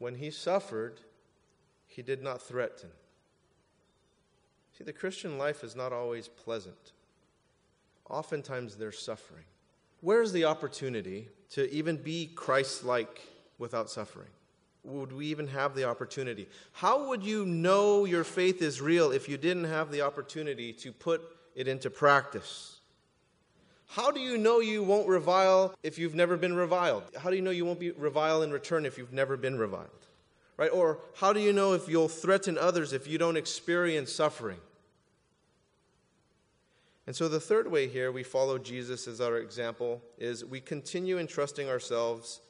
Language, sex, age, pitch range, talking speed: English, male, 30-49, 130-180 Hz, 155 wpm